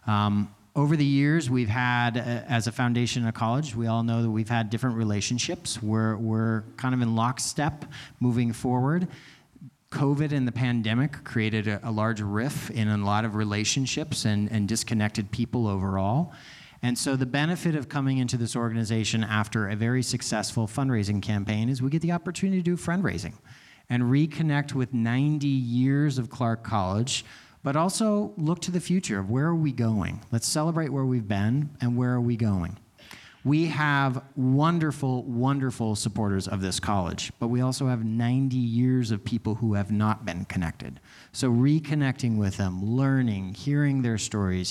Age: 40-59